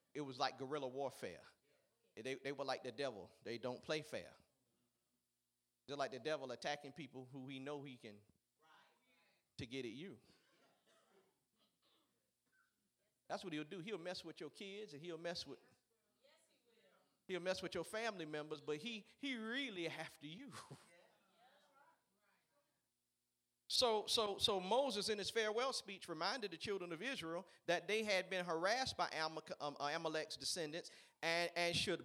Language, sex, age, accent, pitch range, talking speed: English, male, 40-59, American, 155-230 Hz, 150 wpm